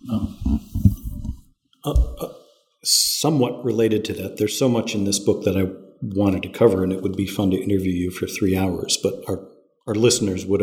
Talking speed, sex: 190 wpm, male